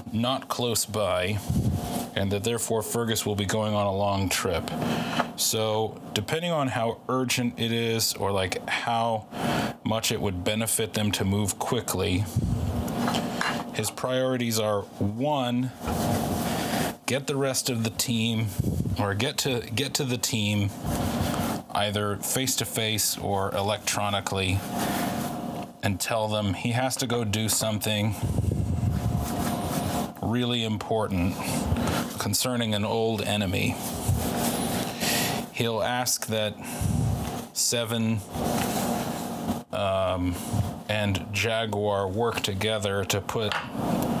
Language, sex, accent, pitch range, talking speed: English, male, American, 100-115 Hz, 110 wpm